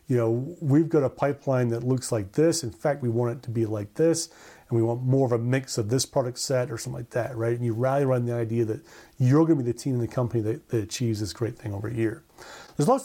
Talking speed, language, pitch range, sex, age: 285 wpm, English, 120-150 Hz, male, 30-49